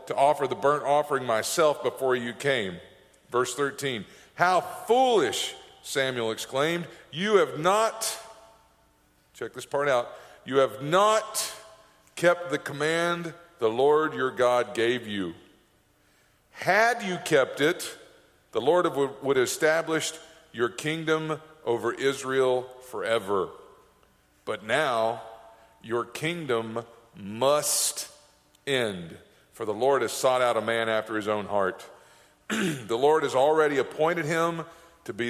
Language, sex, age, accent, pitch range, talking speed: English, male, 50-69, American, 115-160 Hz, 125 wpm